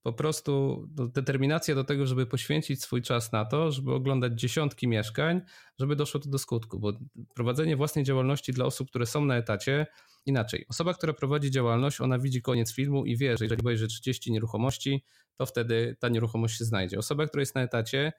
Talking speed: 190 wpm